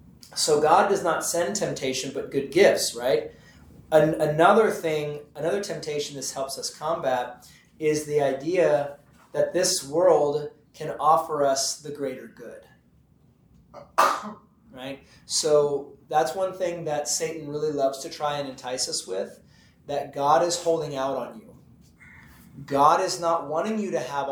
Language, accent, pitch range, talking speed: English, American, 135-165 Hz, 145 wpm